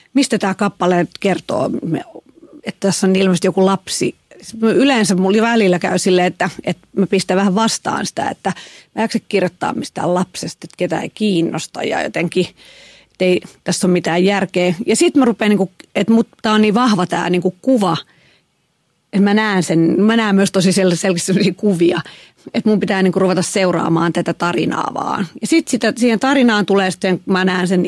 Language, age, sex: Finnish, 40-59, female